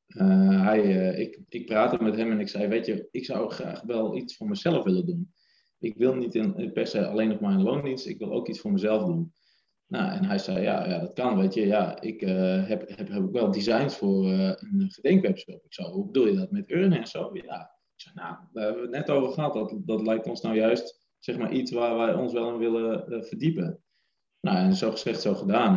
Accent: Dutch